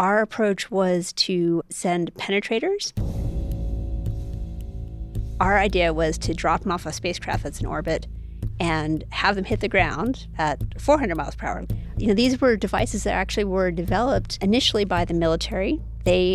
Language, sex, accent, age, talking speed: English, female, American, 30-49, 160 wpm